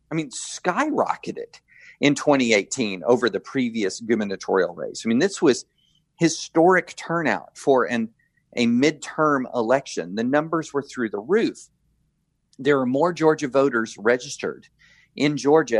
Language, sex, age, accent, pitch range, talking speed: English, male, 40-59, American, 135-170 Hz, 135 wpm